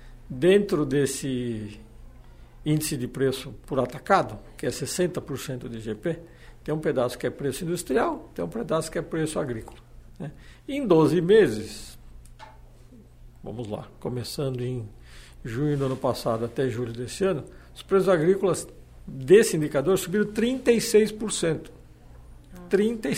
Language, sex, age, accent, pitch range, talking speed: Portuguese, male, 60-79, Brazilian, 120-195 Hz, 125 wpm